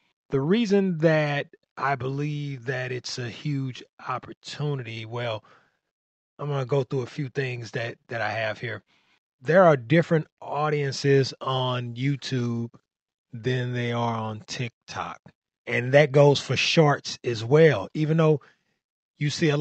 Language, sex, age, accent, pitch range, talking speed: English, male, 30-49, American, 115-145 Hz, 145 wpm